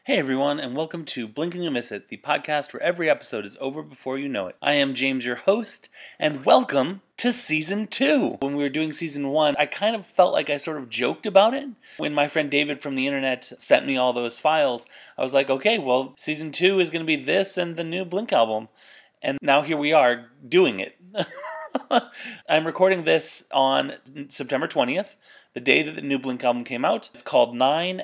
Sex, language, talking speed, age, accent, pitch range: male, English, 220 wpm, 30-49, American, 130-165 Hz